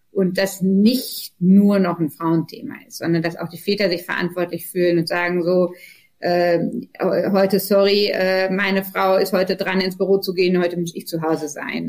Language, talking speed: German, 190 wpm